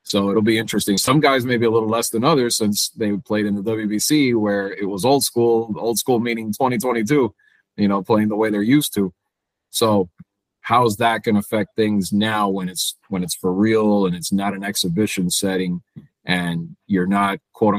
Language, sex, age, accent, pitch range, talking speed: English, male, 30-49, American, 95-110 Hz, 195 wpm